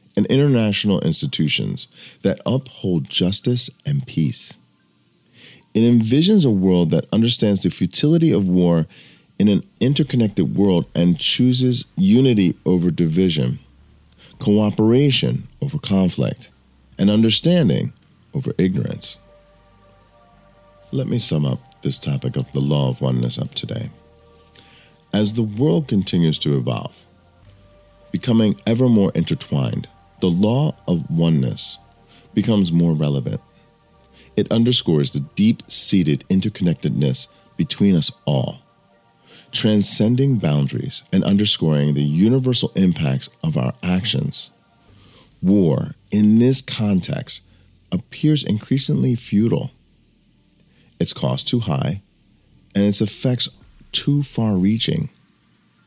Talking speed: 105 wpm